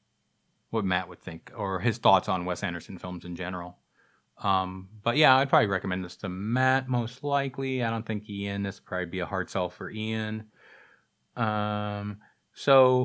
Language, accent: English, American